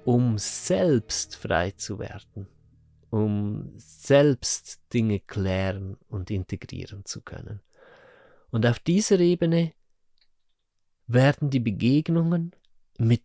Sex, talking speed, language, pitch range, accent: male, 95 wpm, German, 100-130 Hz, German